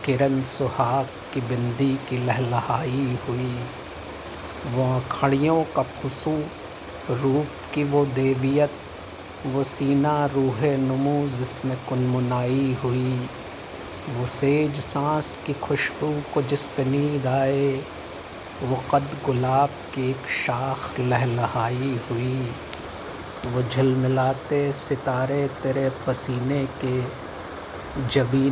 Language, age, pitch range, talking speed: Hindi, 50-69, 125-140 Hz, 95 wpm